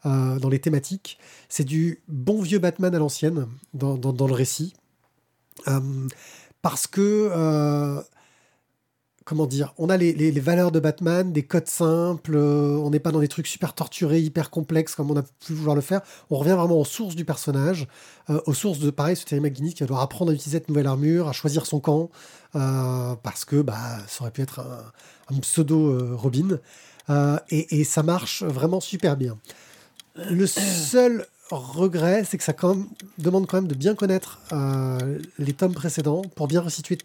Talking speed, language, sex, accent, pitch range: 195 wpm, French, male, French, 145-180 Hz